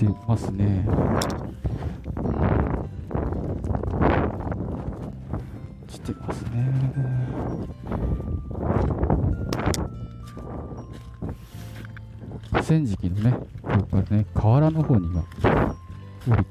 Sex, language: male, Japanese